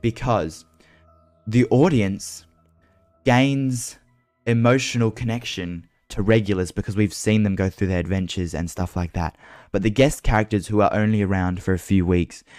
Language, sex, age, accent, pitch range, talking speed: English, male, 10-29, Australian, 90-105 Hz, 155 wpm